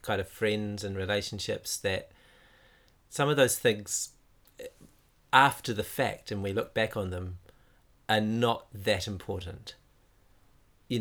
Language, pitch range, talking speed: English, 100-125 Hz, 130 wpm